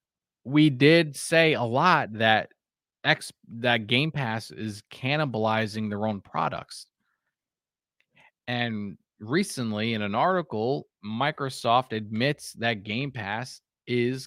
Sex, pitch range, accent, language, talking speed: male, 110-150 Hz, American, English, 110 wpm